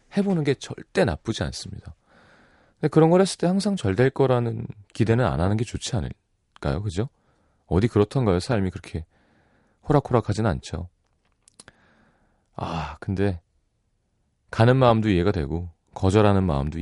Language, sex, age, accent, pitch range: Korean, male, 30-49, native, 85-115 Hz